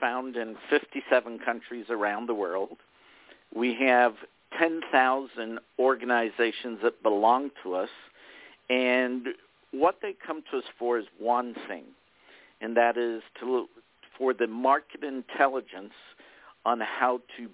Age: 50-69